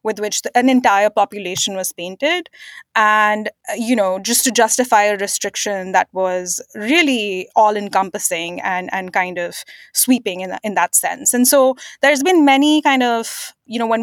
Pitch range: 200-255 Hz